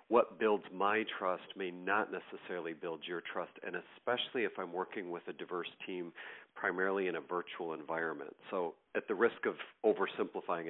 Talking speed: 170 wpm